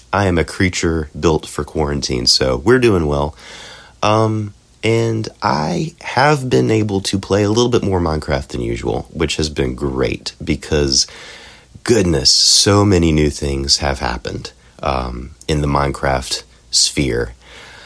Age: 30-49